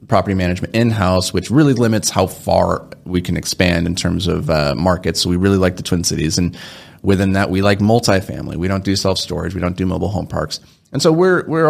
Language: English